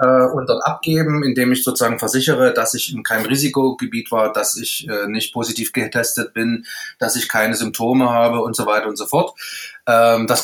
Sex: male